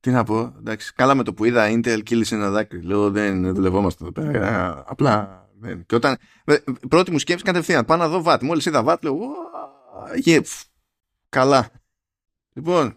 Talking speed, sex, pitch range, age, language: 180 wpm, male, 105-145 Hz, 20-39, Greek